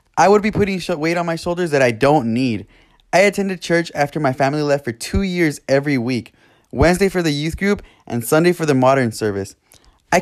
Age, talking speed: 20-39, 210 wpm